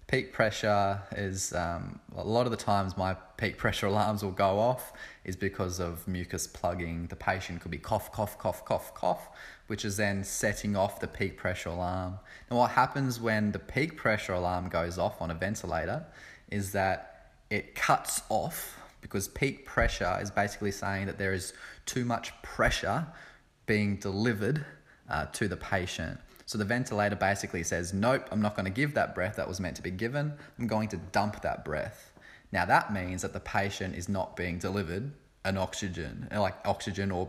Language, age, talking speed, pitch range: English, 20-39, 185 wpm, 95-110 Hz